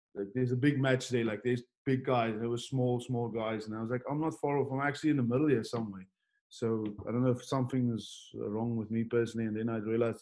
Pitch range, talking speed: 110-125 Hz, 265 wpm